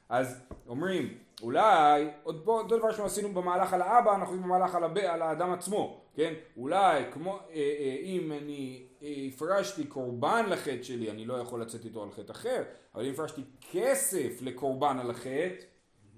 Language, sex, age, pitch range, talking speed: Hebrew, male, 30-49, 140-190 Hz, 160 wpm